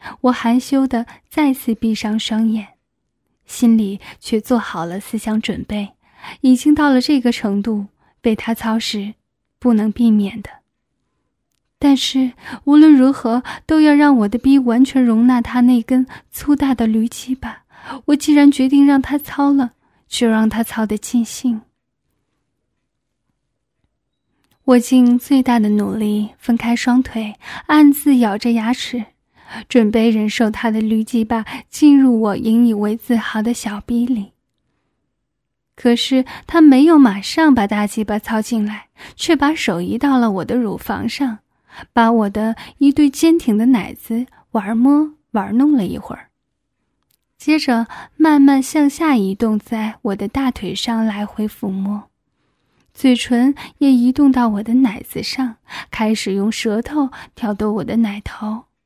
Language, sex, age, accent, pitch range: Turkish, female, 10-29, Chinese, 215-265 Hz